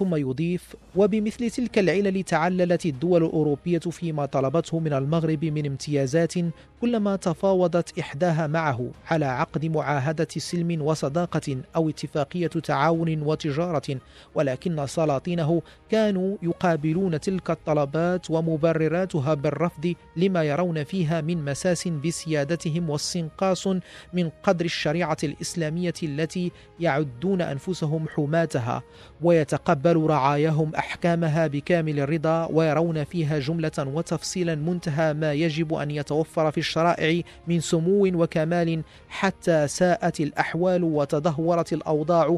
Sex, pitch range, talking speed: male, 155-170 Hz, 105 wpm